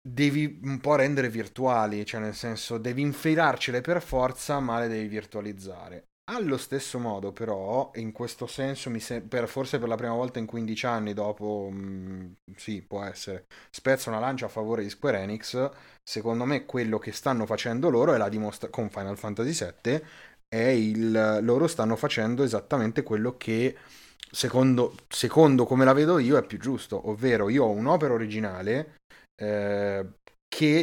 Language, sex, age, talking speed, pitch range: Italian, male, 30-49, 165 wpm, 105-130 Hz